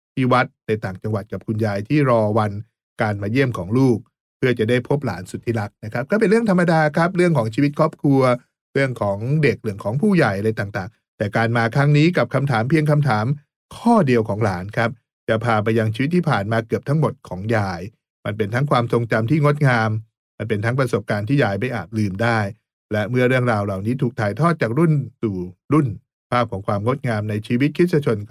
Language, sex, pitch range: English, male, 110-135 Hz